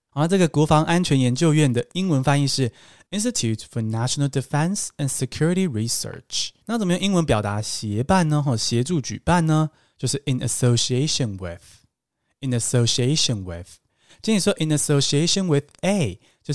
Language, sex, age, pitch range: Chinese, male, 20-39, 115-160 Hz